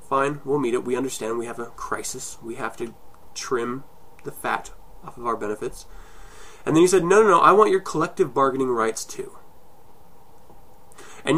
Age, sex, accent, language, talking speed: 20-39, male, American, English, 185 wpm